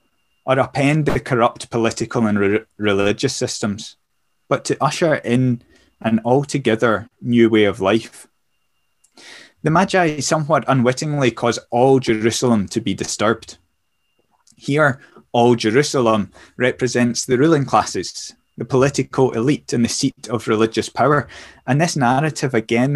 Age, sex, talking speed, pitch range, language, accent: 20-39, male, 130 wpm, 110-130 Hz, English, British